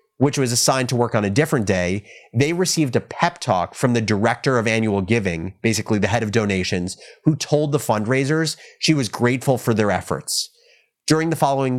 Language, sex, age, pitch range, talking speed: English, male, 30-49, 115-150 Hz, 195 wpm